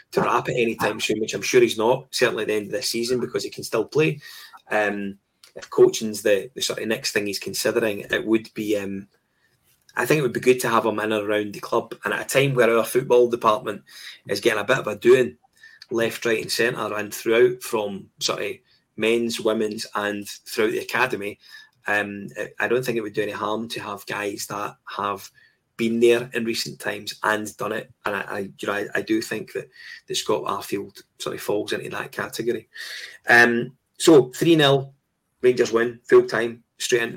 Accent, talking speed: British, 210 wpm